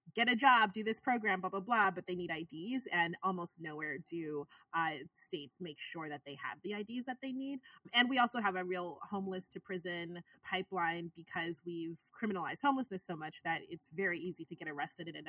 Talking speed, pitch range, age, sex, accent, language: 210 wpm, 170-225 Hz, 30-49, female, American, English